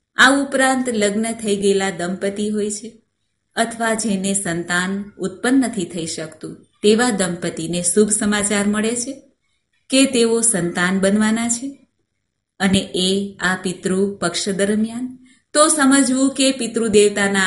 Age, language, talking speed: 30-49, Gujarati, 95 wpm